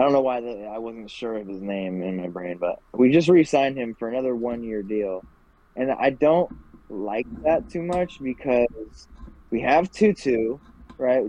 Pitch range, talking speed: 100-125 Hz, 185 wpm